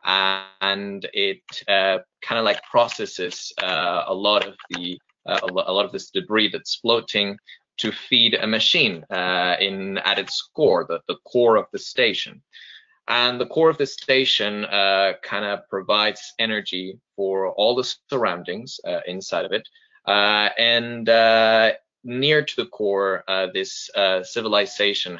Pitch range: 90-115 Hz